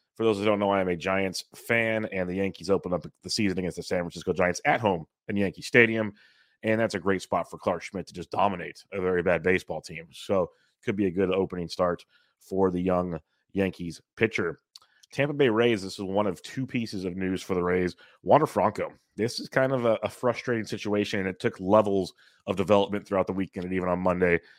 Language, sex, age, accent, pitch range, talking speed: English, male, 30-49, American, 90-110 Hz, 225 wpm